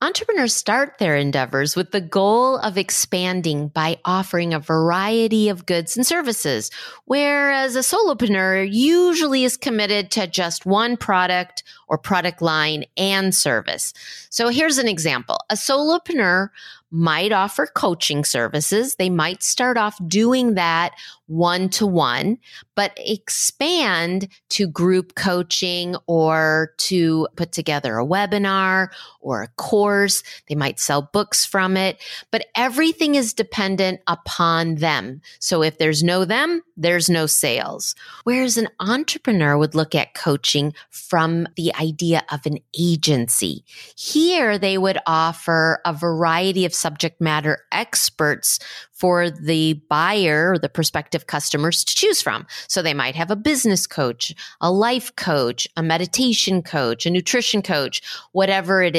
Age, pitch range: 30-49, 160-215 Hz